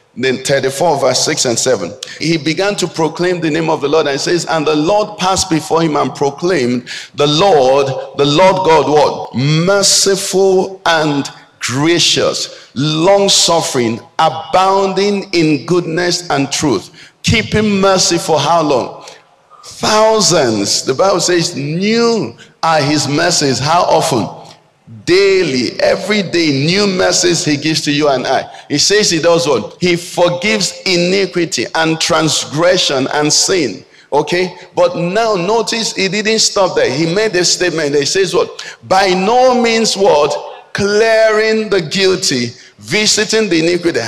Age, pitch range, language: 50-69, 160-210 Hz, English